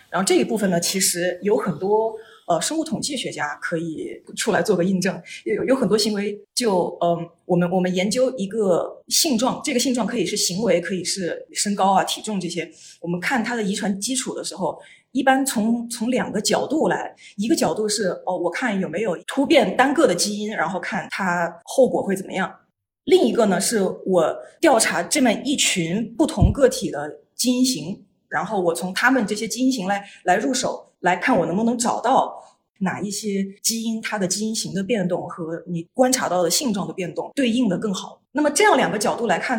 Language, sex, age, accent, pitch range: Chinese, female, 30-49, native, 185-250 Hz